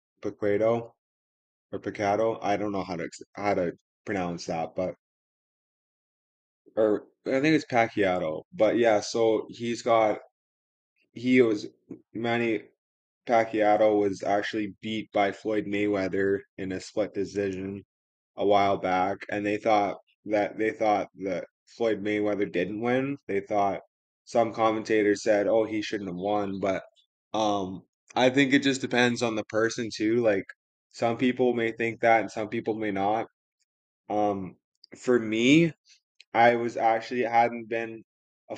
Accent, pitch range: American, 100-115 Hz